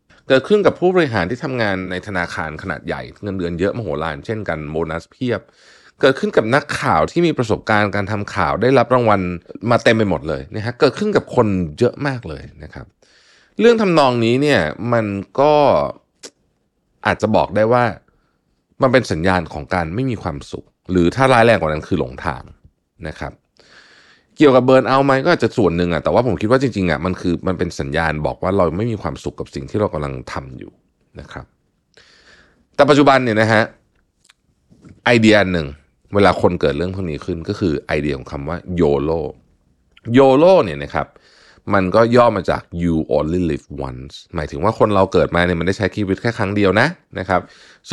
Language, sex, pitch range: Thai, male, 85-120 Hz